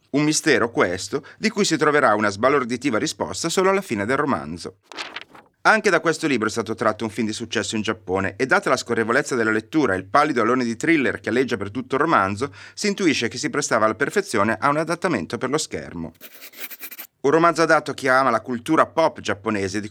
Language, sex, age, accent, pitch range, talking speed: Italian, male, 30-49, native, 110-150 Hz, 210 wpm